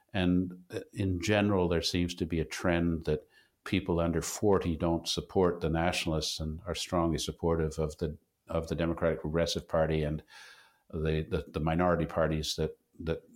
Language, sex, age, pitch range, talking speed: English, male, 50-69, 80-85 Hz, 160 wpm